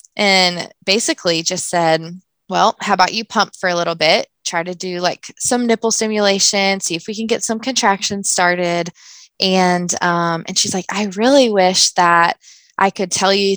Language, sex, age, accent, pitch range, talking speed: English, female, 20-39, American, 175-215 Hz, 180 wpm